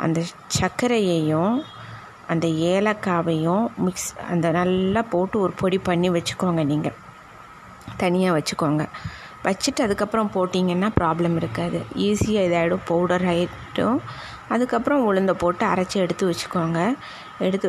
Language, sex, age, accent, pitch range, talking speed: Tamil, female, 20-39, native, 175-205 Hz, 105 wpm